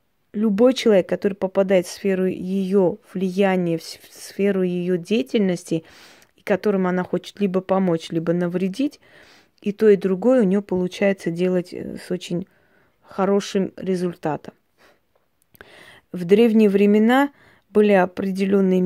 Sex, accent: female, native